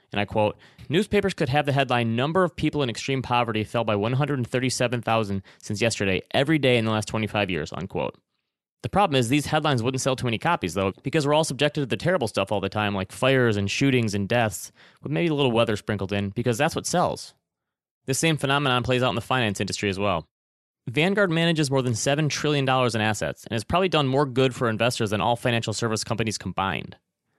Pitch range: 110-145 Hz